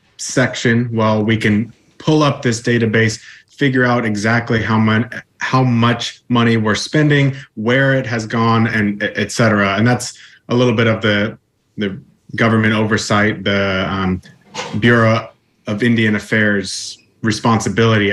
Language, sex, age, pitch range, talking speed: English, male, 30-49, 105-120 Hz, 140 wpm